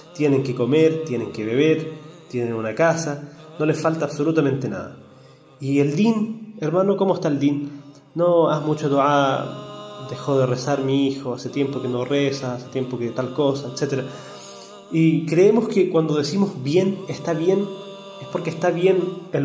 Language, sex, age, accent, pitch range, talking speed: Spanish, male, 20-39, Argentinian, 130-170 Hz, 170 wpm